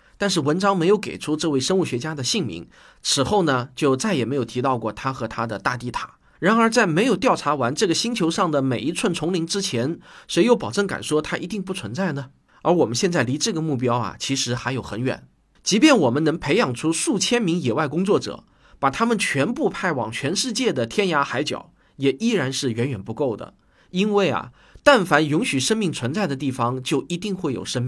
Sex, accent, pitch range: male, native, 125-200 Hz